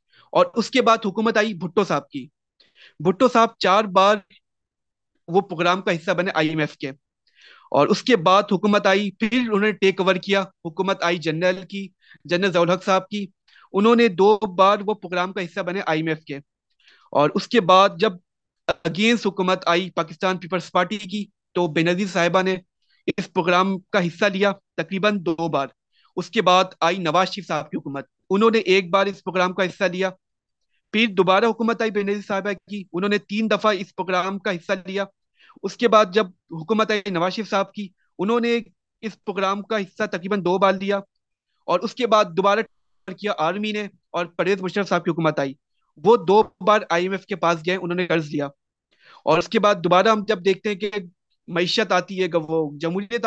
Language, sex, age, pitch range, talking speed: Urdu, male, 30-49, 175-210 Hz, 180 wpm